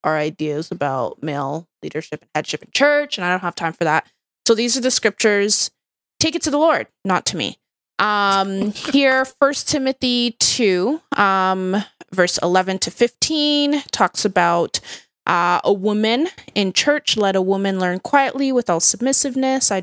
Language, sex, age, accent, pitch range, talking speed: English, female, 20-39, American, 180-235 Hz, 165 wpm